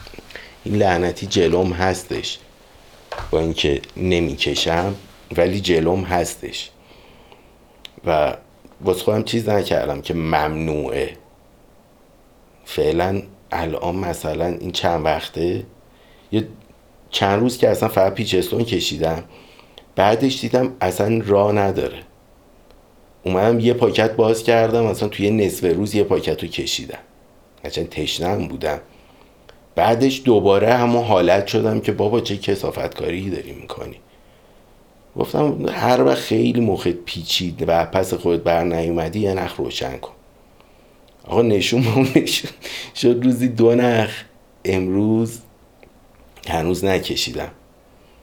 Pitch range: 85-110 Hz